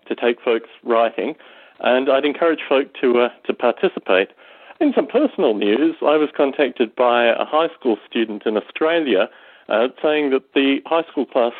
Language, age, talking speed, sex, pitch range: English, 40-59, 170 wpm, male, 120-165 Hz